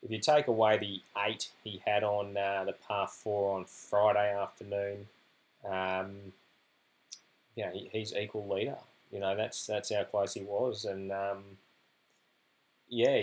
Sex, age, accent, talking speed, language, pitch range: male, 20-39, Australian, 160 wpm, English, 100-110 Hz